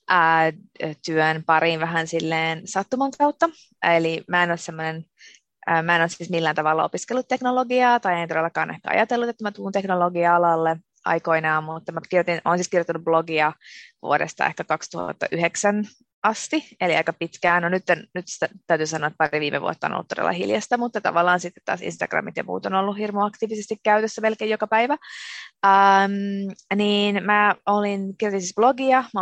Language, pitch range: Finnish, 165-205 Hz